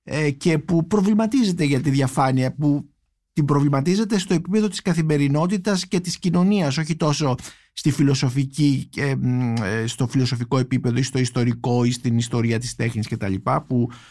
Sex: male